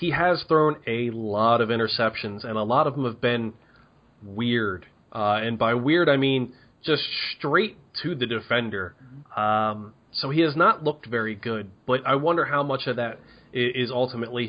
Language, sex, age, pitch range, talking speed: English, male, 20-39, 110-135 Hz, 180 wpm